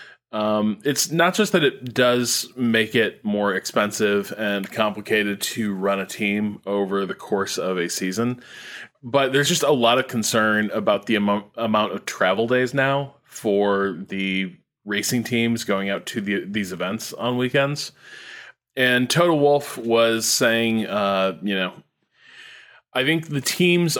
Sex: male